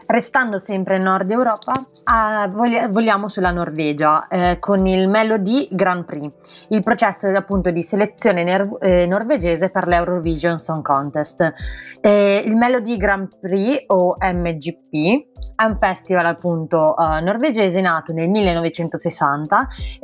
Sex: female